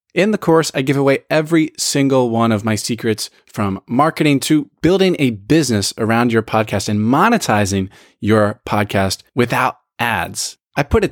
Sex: male